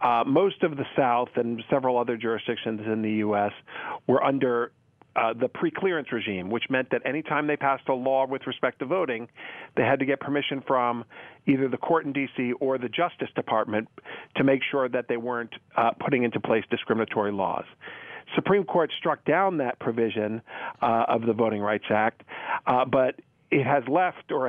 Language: English